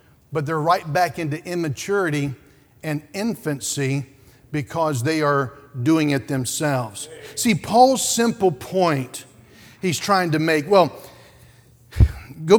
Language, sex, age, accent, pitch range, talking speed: English, male, 50-69, American, 135-185 Hz, 115 wpm